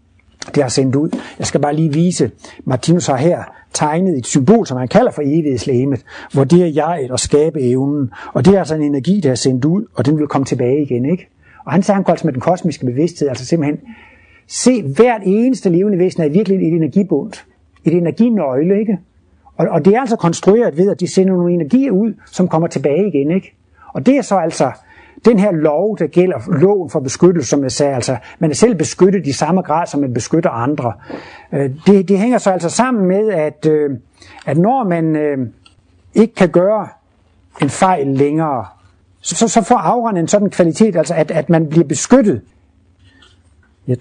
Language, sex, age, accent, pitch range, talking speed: Danish, male, 60-79, native, 135-185 Hz, 195 wpm